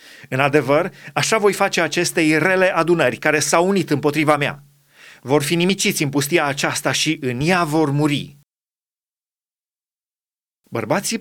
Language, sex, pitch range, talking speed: Romanian, male, 140-175 Hz, 135 wpm